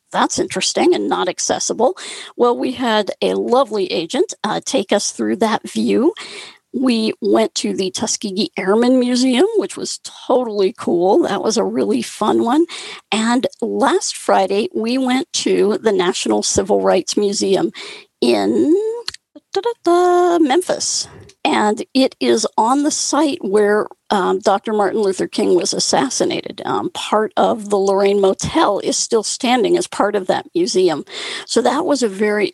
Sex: female